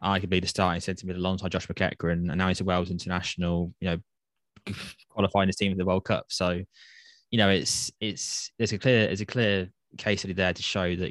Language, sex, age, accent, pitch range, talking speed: English, male, 20-39, British, 90-100 Hz, 225 wpm